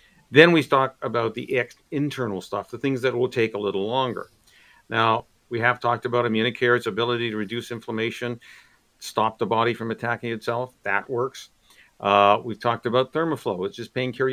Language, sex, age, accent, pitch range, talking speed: English, male, 50-69, American, 115-150 Hz, 180 wpm